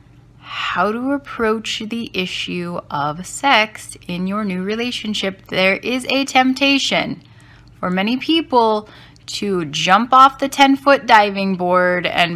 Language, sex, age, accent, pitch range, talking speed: English, female, 10-29, American, 180-245 Hz, 130 wpm